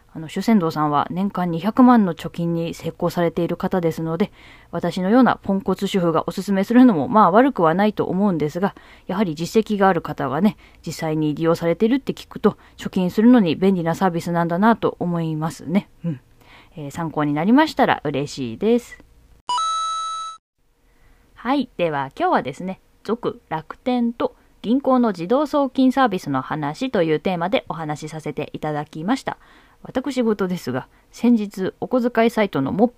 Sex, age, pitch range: female, 20-39, 160-220 Hz